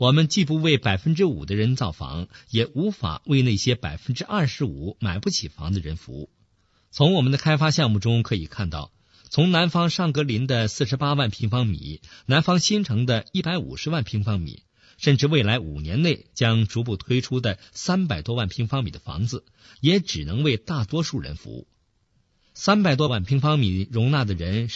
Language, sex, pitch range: Chinese, male, 95-145 Hz